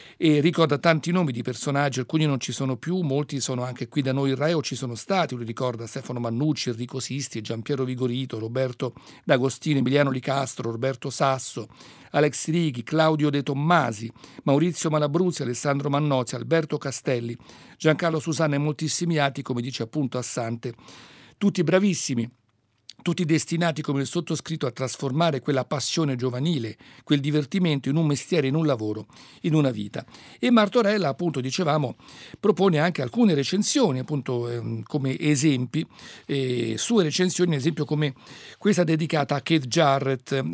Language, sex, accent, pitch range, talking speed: Italian, male, native, 130-160 Hz, 155 wpm